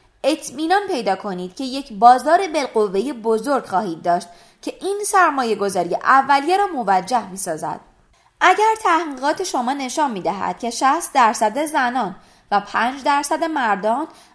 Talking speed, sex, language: 135 wpm, female, Persian